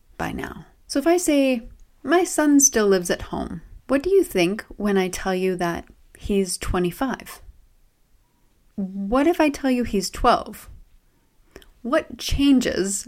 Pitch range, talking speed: 185-245 Hz, 145 wpm